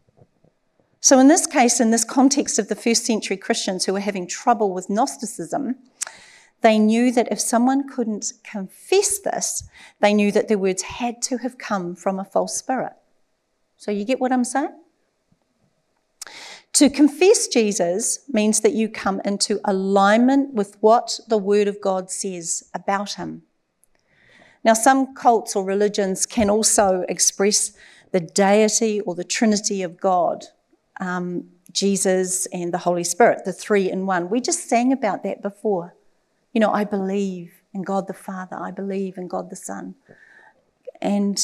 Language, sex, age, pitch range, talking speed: English, female, 40-59, 190-240 Hz, 160 wpm